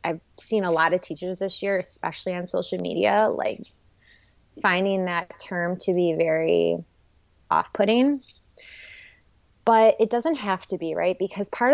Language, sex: English, female